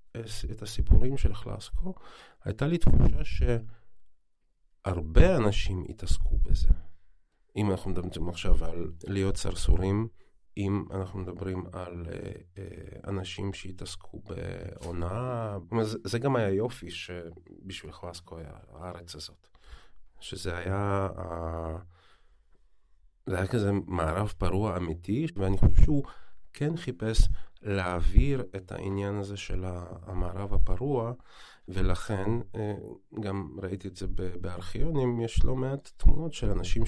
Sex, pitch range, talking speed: male, 90-110 Hz, 105 wpm